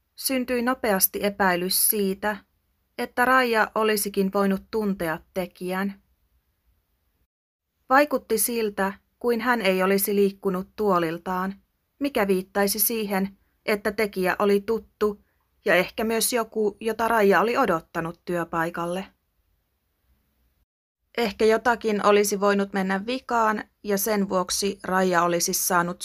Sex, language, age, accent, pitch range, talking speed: female, Finnish, 30-49, native, 165-210 Hz, 105 wpm